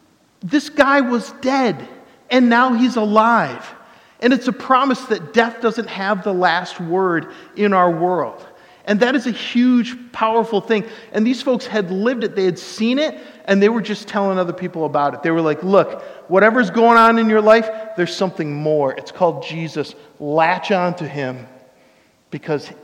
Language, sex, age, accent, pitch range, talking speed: English, male, 50-69, American, 145-225 Hz, 180 wpm